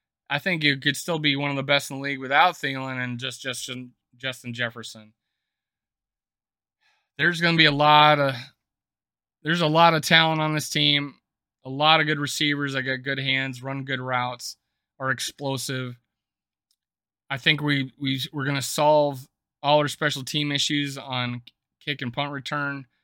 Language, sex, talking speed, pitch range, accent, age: English, male, 175 wpm, 130-150 Hz, American, 20-39